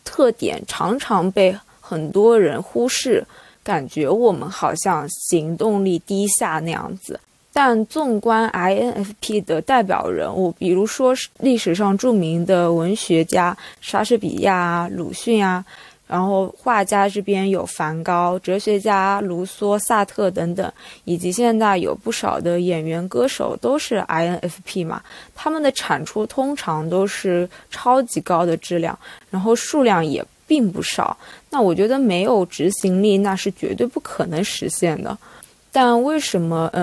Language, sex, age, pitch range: Chinese, female, 20-39, 175-230 Hz